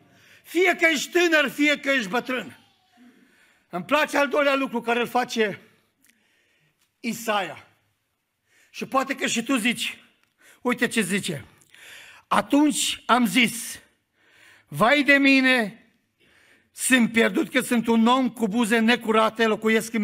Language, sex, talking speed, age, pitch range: Romanian, male, 130 wpm, 50-69, 235-310 Hz